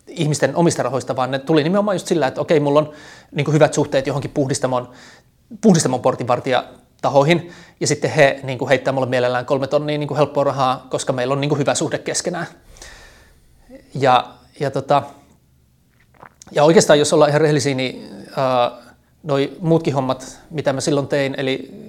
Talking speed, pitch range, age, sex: 175 wpm, 135-155 Hz, 30-49, male